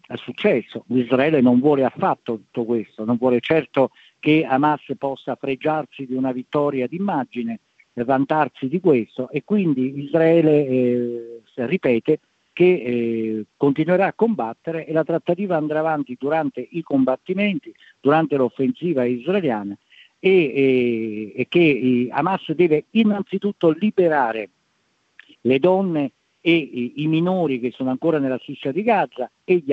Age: 50-69